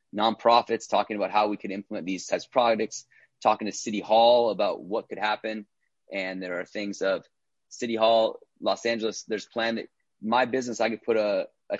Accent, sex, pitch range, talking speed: American, male, 100-115 Hz, 195 wpm